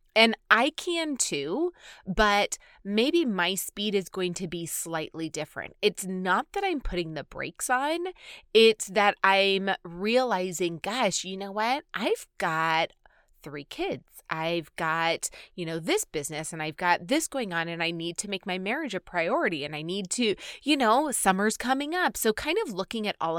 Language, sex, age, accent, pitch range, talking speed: English, female, 20-39, American, 170-225 Hz, 180 wpm